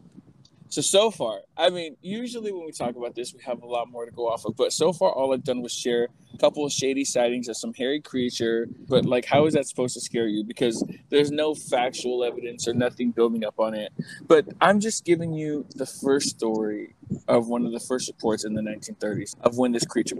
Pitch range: 120-175 Hz